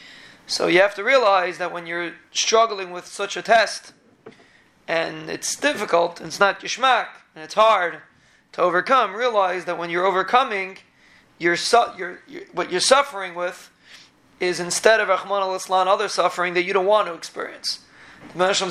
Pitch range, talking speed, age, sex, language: 175-200 Hz, 165 wpm, 30-49, male, English